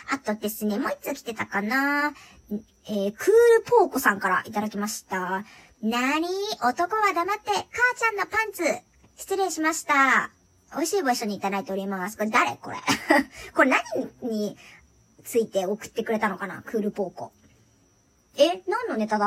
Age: 40-59